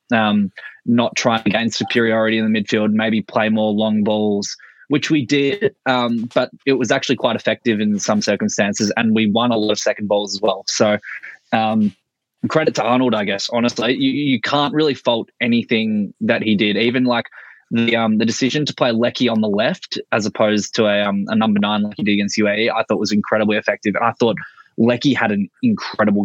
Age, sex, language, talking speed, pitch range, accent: 20-39, male, English, 210 wpm, 110-130 Hz, Australian